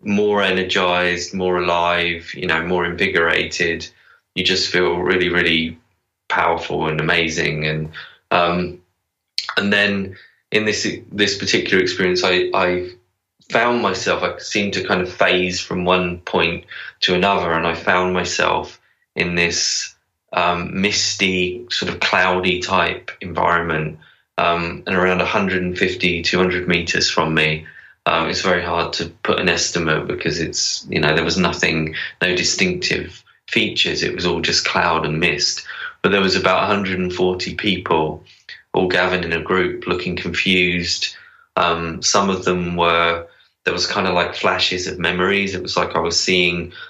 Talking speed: 150 wpm